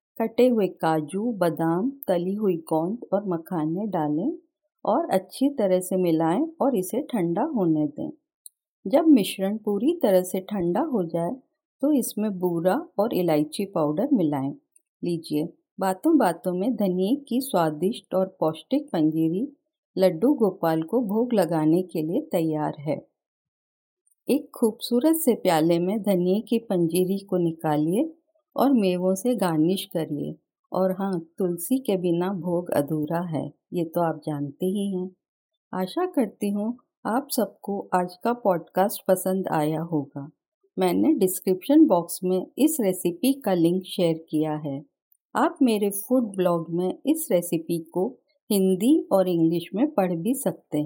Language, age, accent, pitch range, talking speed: Hindi, 50-69, native, 170-250 Hz, 140 wpm